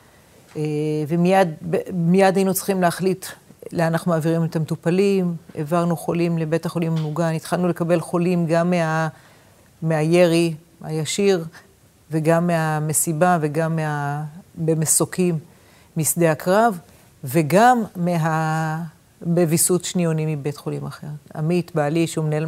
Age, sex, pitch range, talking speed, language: 40-59, female, 155-175 Hz, 100 wpm, Hebrew